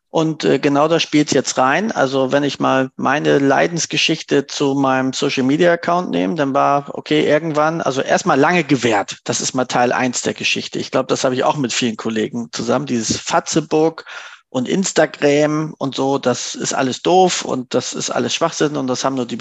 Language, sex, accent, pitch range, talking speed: German, male, German, 140-170 Hz, 190 wpm